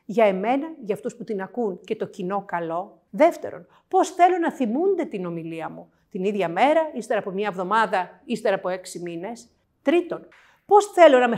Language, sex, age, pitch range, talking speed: Greek, female, 50-69, 185-270 Hz, 185 wpm